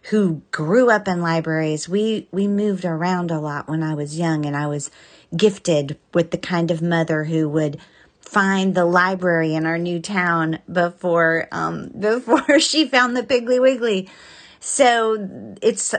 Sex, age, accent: female, 30-49, American